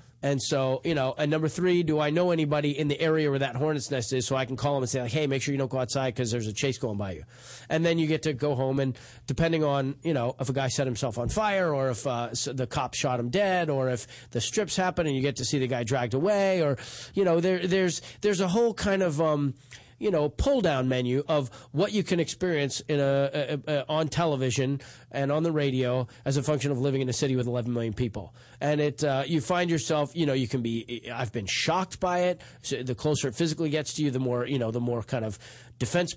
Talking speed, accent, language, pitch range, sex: 265 wpm, American, English, 125-160 Hz, male